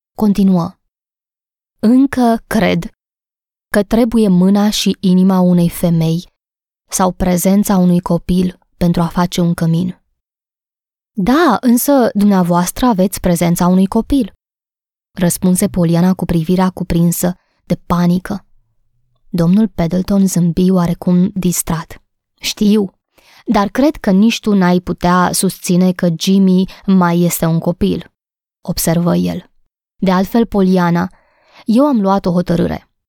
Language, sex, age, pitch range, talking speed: Romanian, female, 20-39, 175-205 Hz, 115 wpm